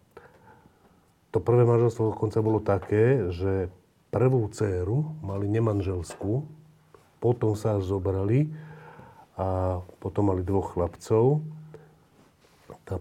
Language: Slovak